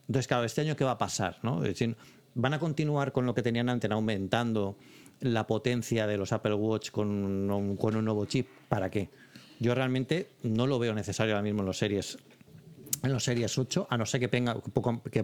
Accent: Spanish